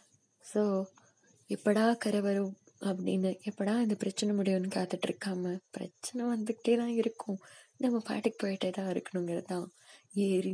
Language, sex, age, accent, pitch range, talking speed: Tamil, female, 20-39, native, 185-210 Hz, 115 wpm